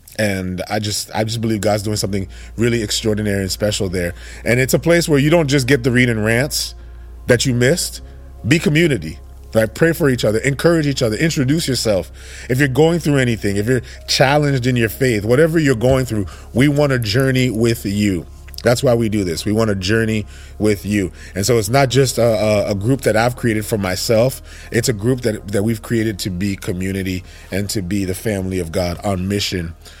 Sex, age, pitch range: male, 30-49, 95-125 Hz